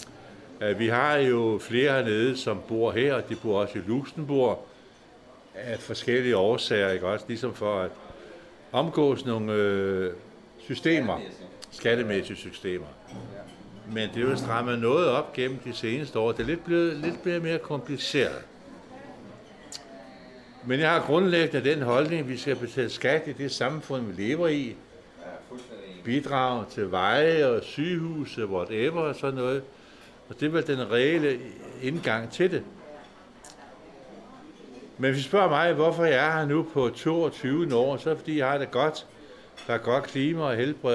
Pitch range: 120-160 Hz